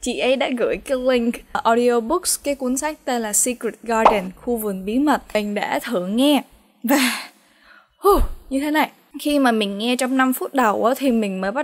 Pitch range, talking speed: 215-275 Hz, 200 wpm